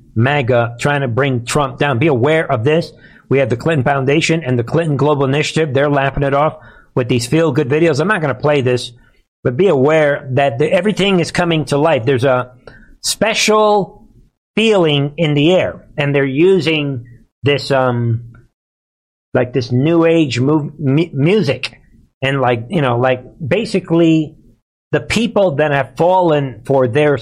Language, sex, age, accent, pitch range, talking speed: English, male, 50-69, American, 125-165 Hz, 160 wpm